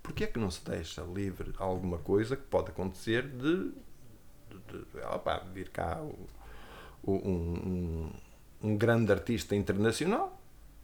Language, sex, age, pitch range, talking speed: Portuguese, male, 50-69, 95-135 Hz, 140 wpm